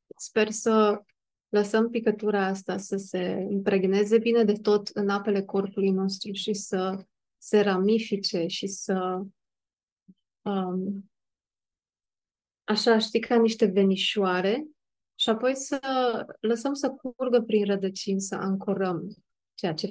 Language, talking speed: Romanian, 115 wpm